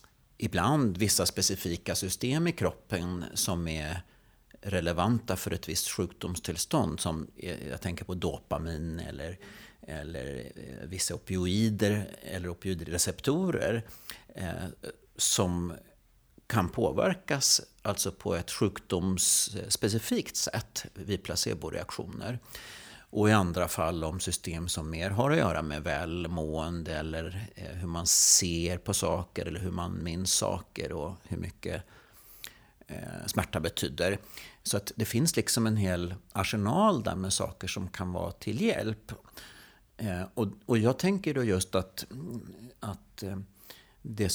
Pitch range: 85-105 Hz